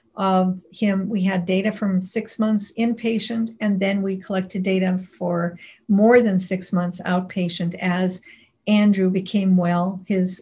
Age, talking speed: 50-69, 145 wpm